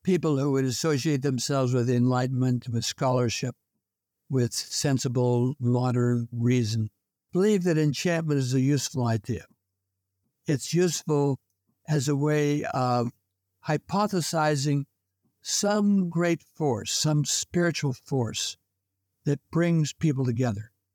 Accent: American